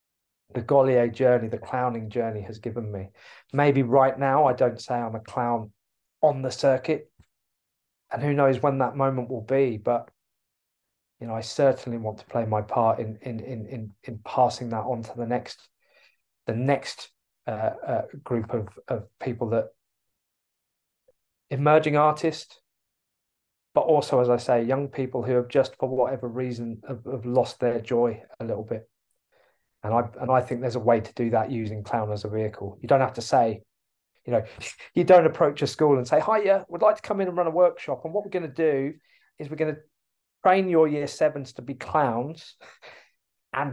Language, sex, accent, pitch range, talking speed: English, male, British, 120-150 Hz, 195 wpm